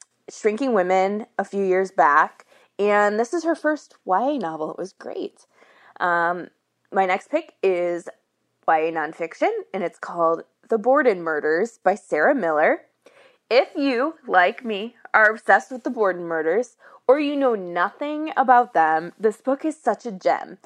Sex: female